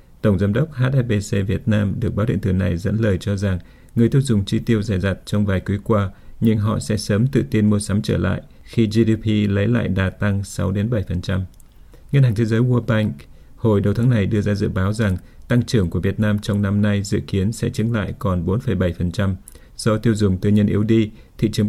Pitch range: 95-115 Hz